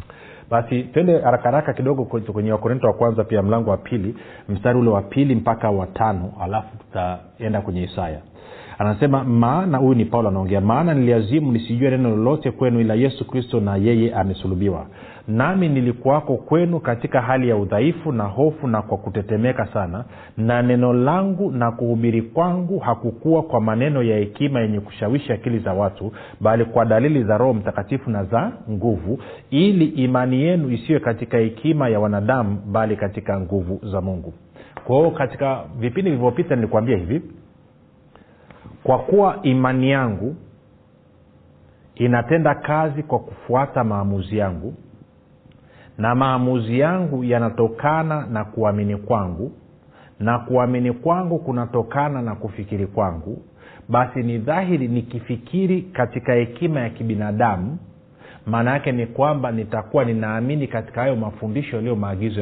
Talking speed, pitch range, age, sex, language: 135 wpm, 105-135 Hz, 40-59, male, Swahili